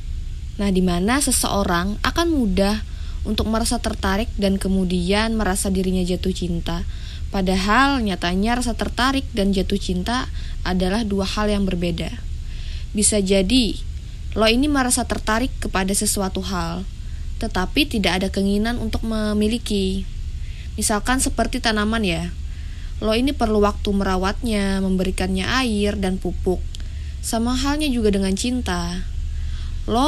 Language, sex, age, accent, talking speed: Indonesian, female, 20-39, native, 120 wpm